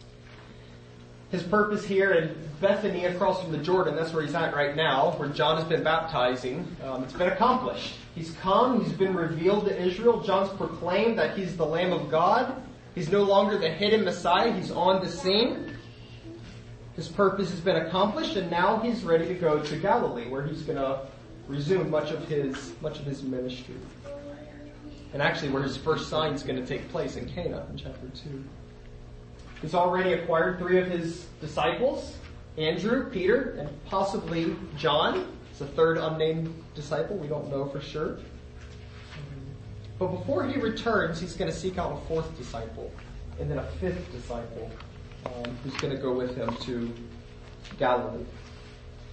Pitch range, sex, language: 125-180 Hz, male, English